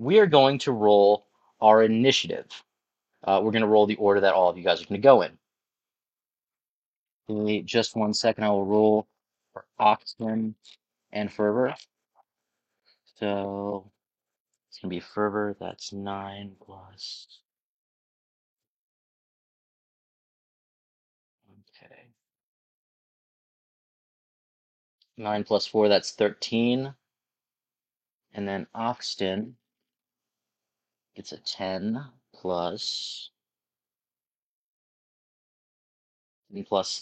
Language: English